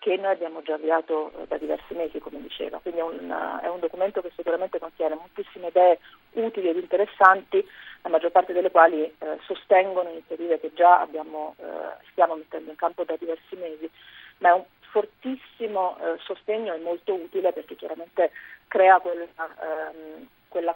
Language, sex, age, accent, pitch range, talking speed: Italian, female, 40-59, native, 165-210 Hz, 155 wpm